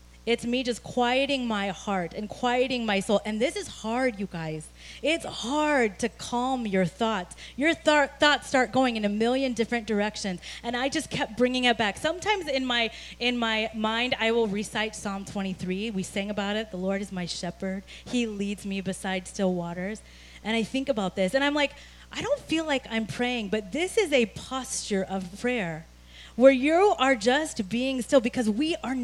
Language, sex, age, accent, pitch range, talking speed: English, female, 30-49, American, 205-290 Hz, 195 wpm